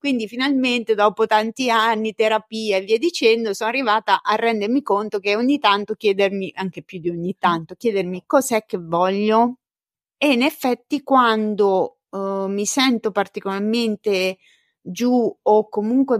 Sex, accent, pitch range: female, native, 210-250 Hz